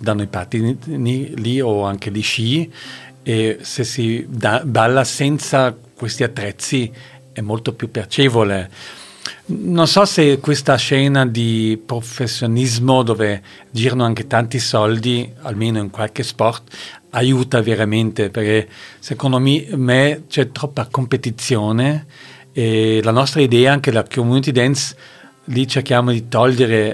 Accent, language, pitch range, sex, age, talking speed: native, Italian, 110-135 Hz, male, 40-59, 125 wpm